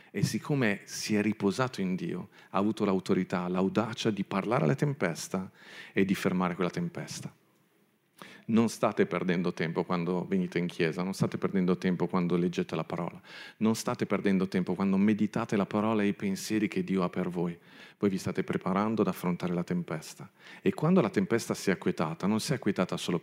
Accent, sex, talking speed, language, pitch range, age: native, male, 185 wpm, Italian, 90-110 Hz, 40-59